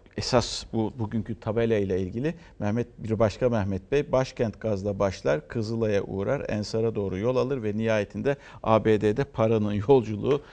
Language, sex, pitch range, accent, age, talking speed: Turkish, male, 105-145 Hz, native, 60-79, 140 wpm